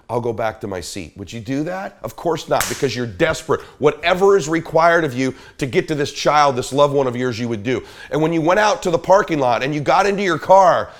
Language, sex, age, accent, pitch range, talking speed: English, male, 40-59, American, 140-205 Hz, 265 wpm